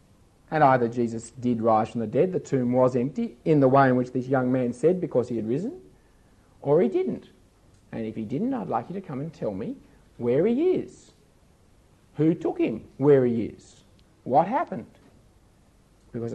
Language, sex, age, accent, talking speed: English, male, 50-69, Australian, 190 wpm